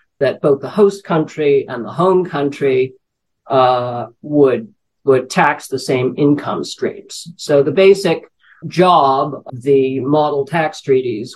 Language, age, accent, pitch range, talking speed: English, 50-69, American, 135-175 Hz, 135 wpm